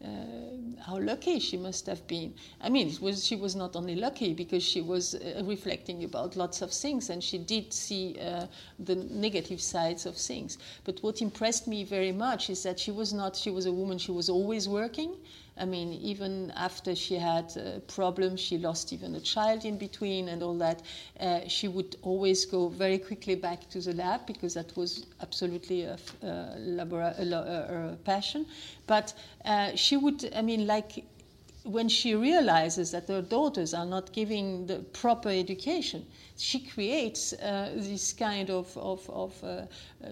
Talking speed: 170 wpm